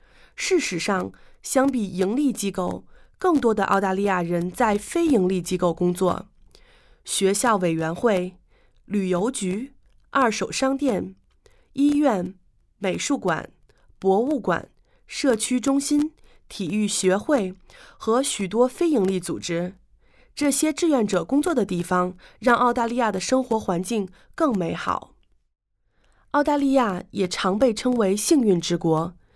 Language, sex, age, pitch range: English, female, 30-49, 190-275 Hz